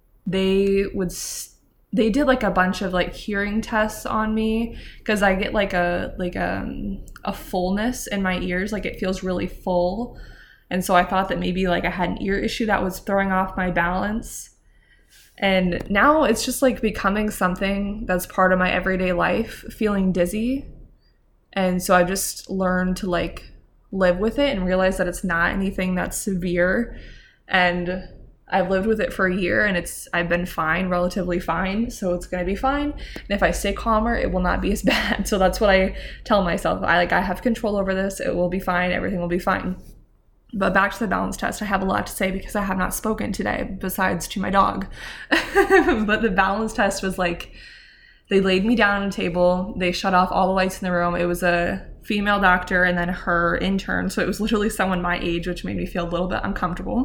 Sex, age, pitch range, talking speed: female, 20-39, 180-210 Hz, 215 wpm